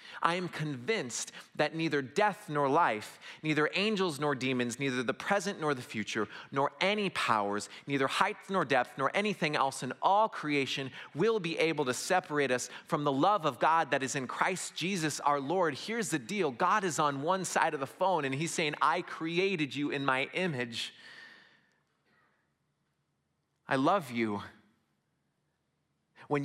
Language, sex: English, male